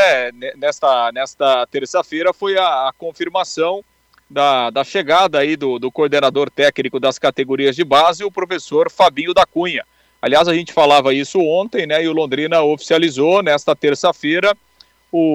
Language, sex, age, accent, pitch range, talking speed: Portuguese, male, 40-59, Brazilian, 145-185 Hz, 150 wpm